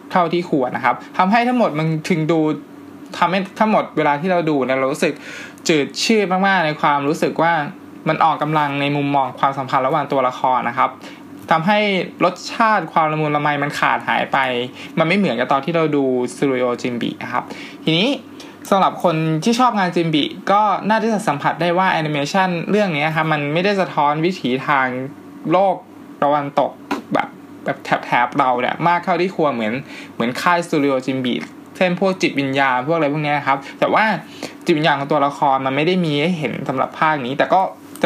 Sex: male